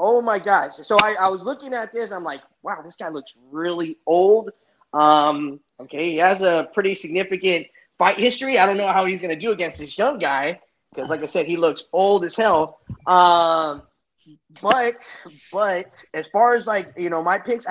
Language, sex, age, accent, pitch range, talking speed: English, male, 20-39, American, 155-200 Hz, 200 wpm